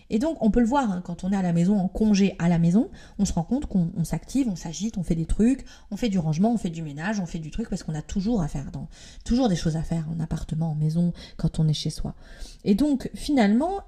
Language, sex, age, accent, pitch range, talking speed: French, female, 30-49, French, 170-225 Hz, 290 wpm